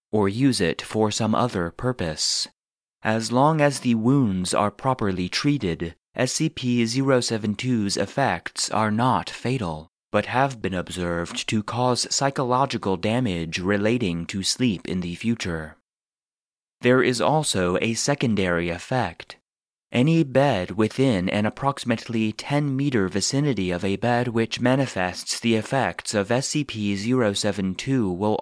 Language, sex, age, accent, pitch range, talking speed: English, male, 30-49, American, 95-130 Hz, 120 wpm